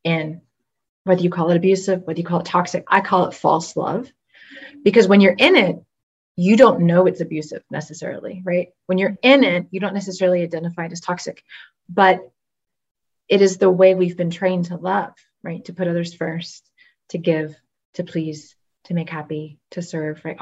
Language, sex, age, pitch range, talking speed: English, female, 30-49, 170-195 Hz, 190 wpm